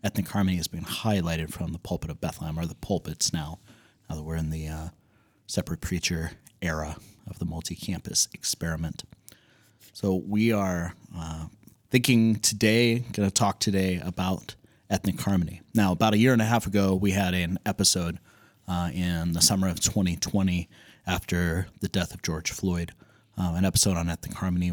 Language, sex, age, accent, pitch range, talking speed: English, male, 30-49, American, 85-110 Hz, 170 wpm